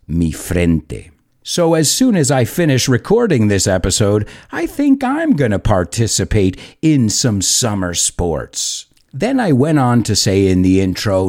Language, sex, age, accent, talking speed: English, male, 50-69, American, 160 wpm